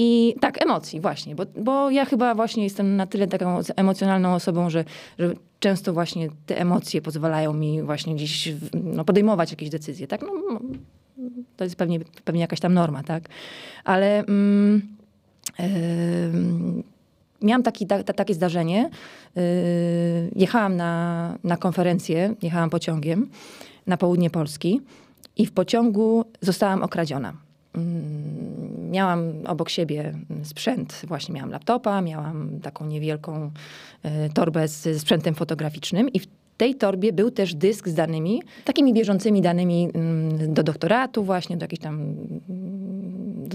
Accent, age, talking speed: native, 20-39, 120 wpm